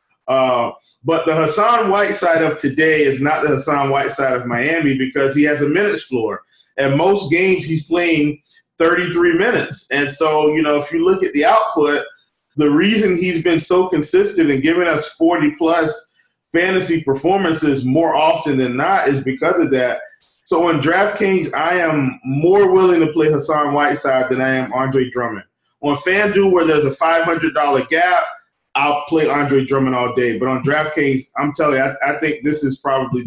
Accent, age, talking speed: American, 20-39, 185 wpm